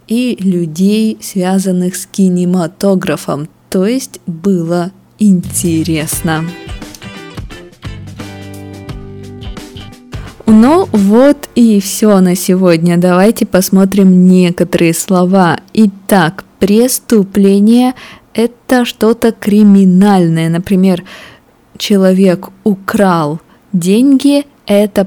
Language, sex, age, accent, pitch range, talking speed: Russian, female, 20-39, native, 170-215 Hz, 70 wpm